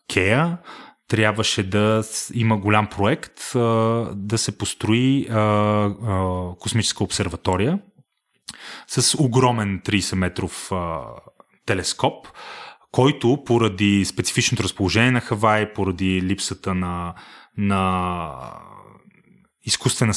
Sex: male